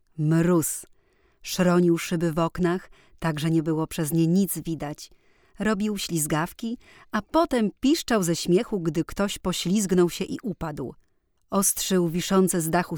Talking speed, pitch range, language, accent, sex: 140 wpm, 165-220 Hz, English, Polish, female